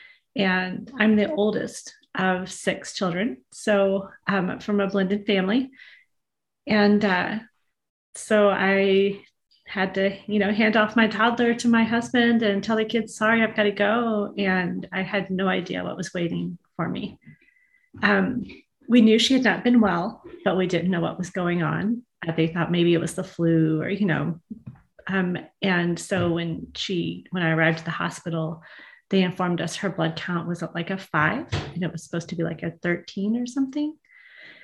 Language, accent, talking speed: English, American, 185 wpm